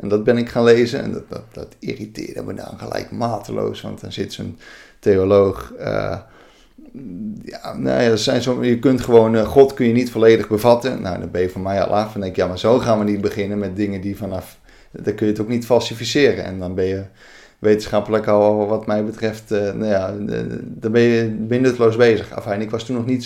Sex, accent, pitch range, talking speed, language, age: male, Dutch, 105-120 Hz, 230 wpm, Dutch, 30-49